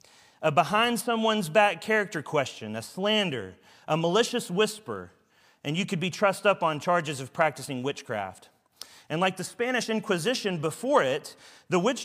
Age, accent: 40-59, American